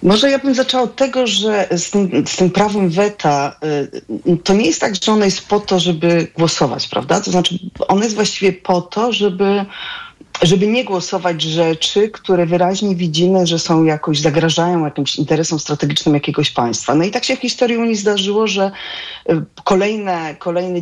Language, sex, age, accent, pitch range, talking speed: Polish, female, 40-59, native, 155-200 Hz, 175 wpm